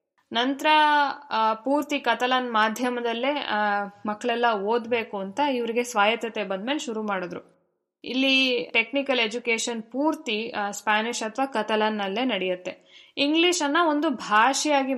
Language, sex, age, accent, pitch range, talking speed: Kannada, female, 20-39, native, 200-255 Hz, 105 wpm